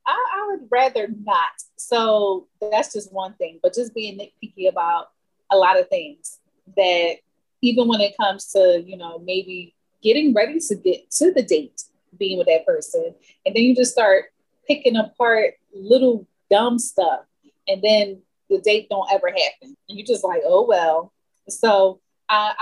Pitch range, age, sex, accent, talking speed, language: 195-280 Hz, 30-49, female, American, 170 wpm, English